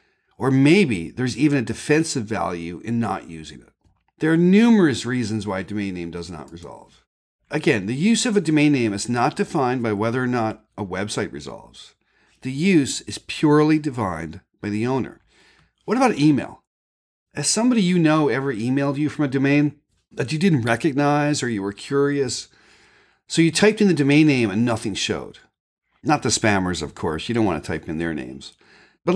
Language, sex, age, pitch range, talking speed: English, male, 40-59, 110-155 Hz, 190 wpm